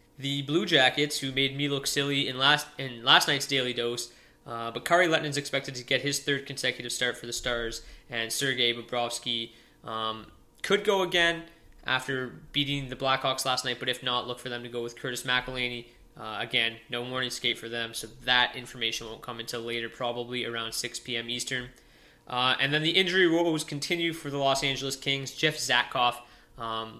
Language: English